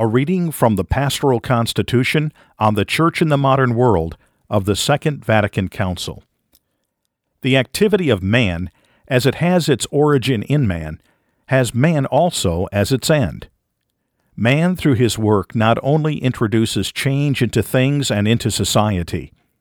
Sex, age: male, 50-69